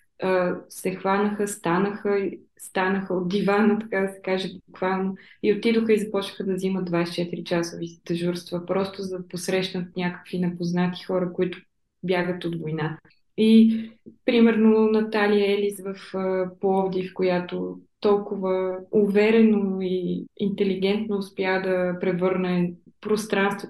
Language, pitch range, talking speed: Bulgarian, 175-205 Hz, 115 wpm